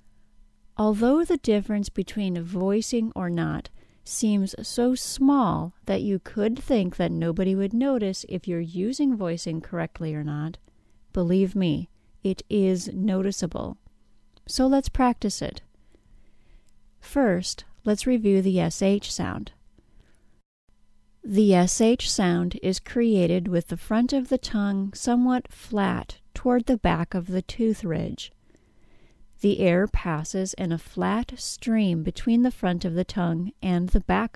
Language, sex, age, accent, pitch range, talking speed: English, female, 40-59, American, 160-225 Hz, 135 wpm